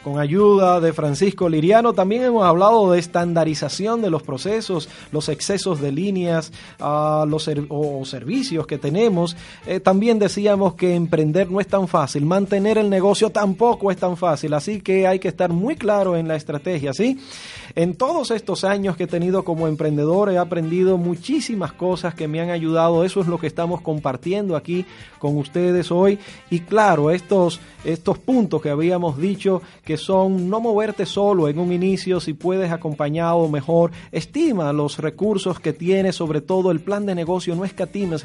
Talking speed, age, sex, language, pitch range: 175 wpm, 30-49, male, Spanish, 155-195 Hz